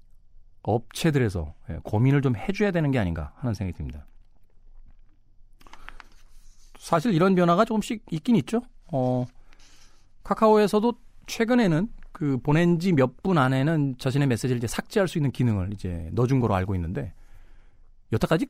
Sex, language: male, Korean